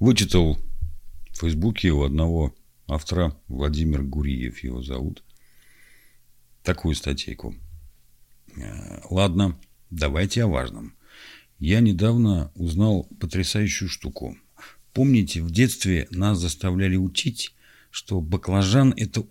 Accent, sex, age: native, male, 50-69